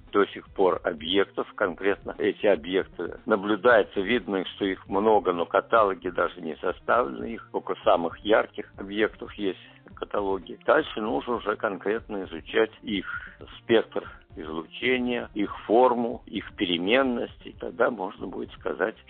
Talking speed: 125 wpm